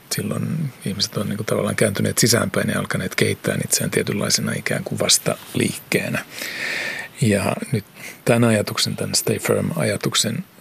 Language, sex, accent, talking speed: Finnish, male, native, 125 wpm